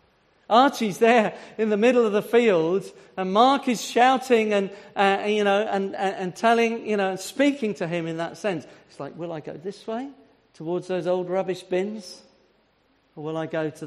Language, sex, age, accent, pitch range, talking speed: English, male, 50-69, British, 190-260 Hz, 195 wpm